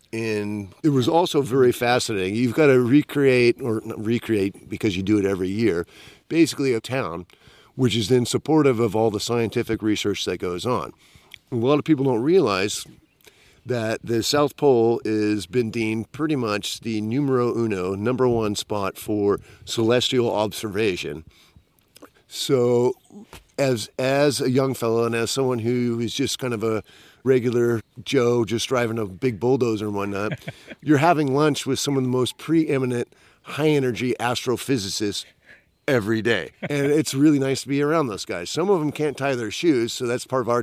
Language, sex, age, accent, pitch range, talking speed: English, male, 50-69, American, 110-135 Hz, 170 wpm